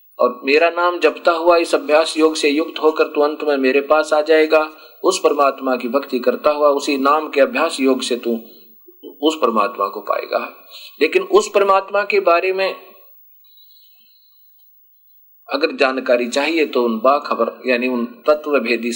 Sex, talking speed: male, 160 wpm